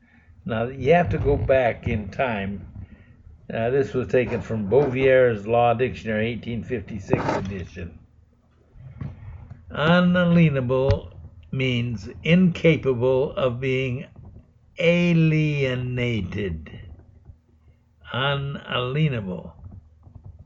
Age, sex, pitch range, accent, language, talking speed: 60-79, male, 100-145 Hz, American, English, 75 wpm